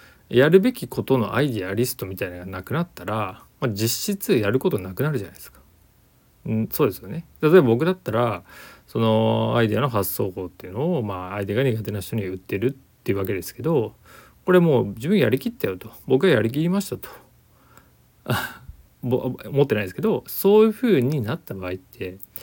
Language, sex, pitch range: Japanese, male, 100-150 Hz